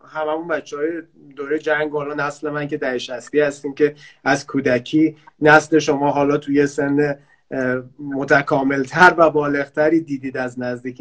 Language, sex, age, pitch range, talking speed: Persian, male, 30-49, 135-175 Hz, 140 wpm